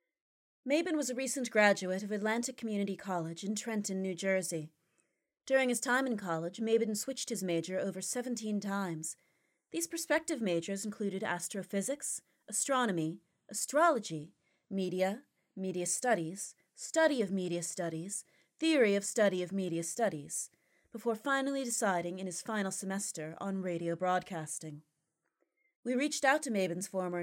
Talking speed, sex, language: 135 wpm, female, English